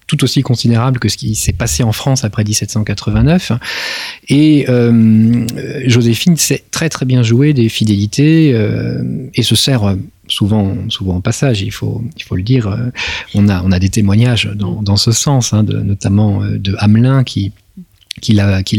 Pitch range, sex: 100-130 Hz, male